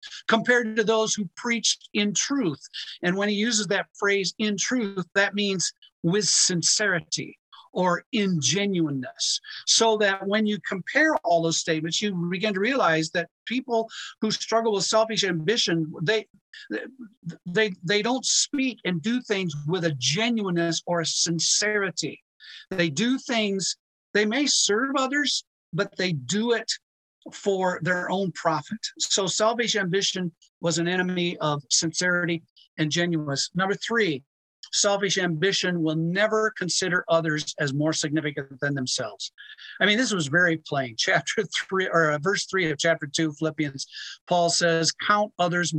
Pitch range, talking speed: 165-210 Hz, 145 wpm